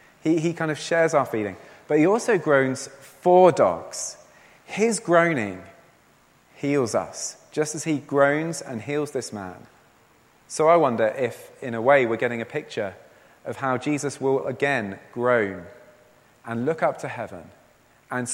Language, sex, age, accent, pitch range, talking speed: English, male, 30-49, British, 115-155 Hz, 155 wpm